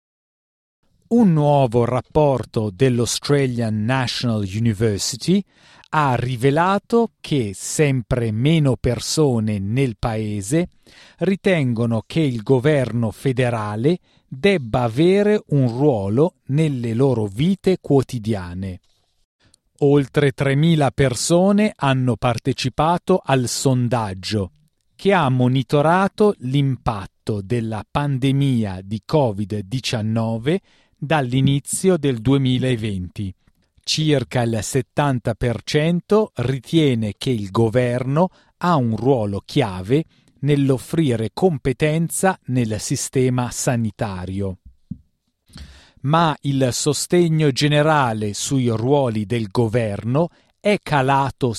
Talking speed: 85 wpm